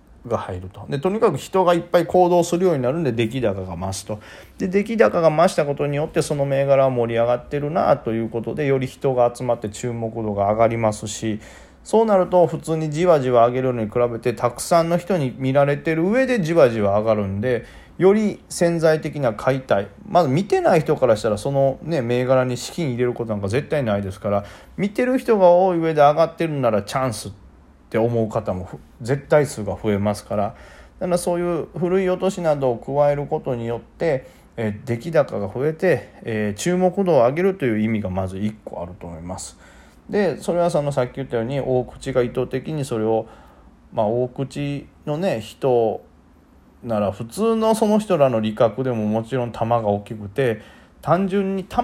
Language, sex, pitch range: Japanese, male, 110-170 Hz